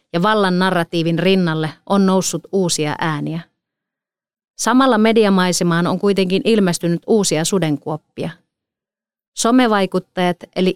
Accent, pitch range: native, 165-200 Hz